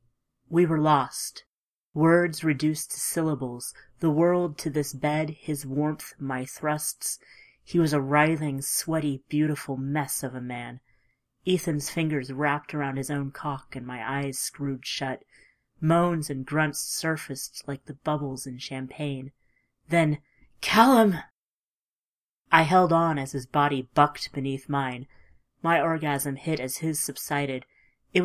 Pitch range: 135-160 Hz